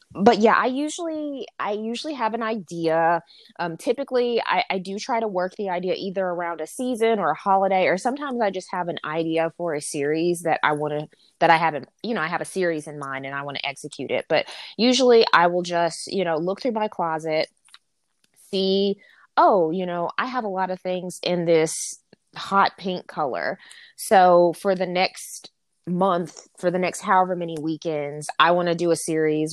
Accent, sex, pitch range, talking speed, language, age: American, female, 160-200 Hz, 205 wpm, English, 20-39